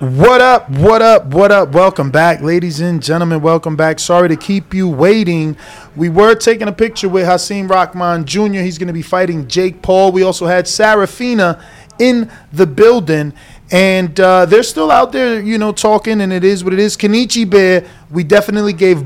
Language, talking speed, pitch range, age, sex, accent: English, 190 wpm, 170-210 Hz, 20-39, male, American